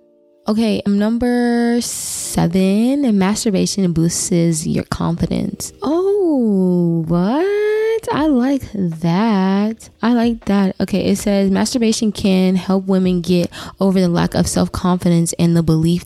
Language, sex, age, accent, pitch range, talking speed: English, female, 20-39, American, 160-200 Hz, 120 wpm